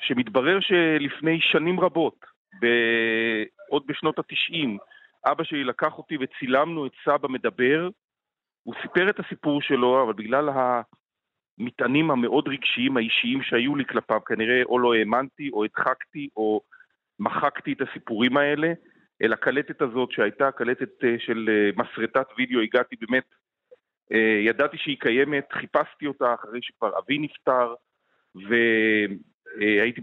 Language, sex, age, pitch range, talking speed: Hebrew, male, 40-59, 120-155 Hz, 120 wpm